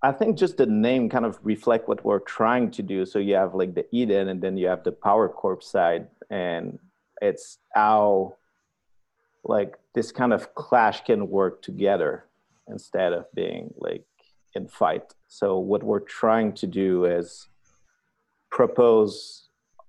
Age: 30-49